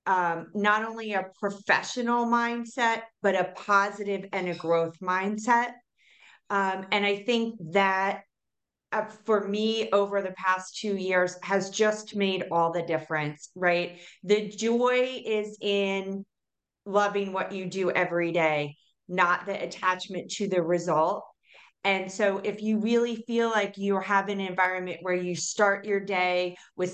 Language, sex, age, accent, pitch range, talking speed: English, female, 30-49, American, 170-210 Hz, 145 wpm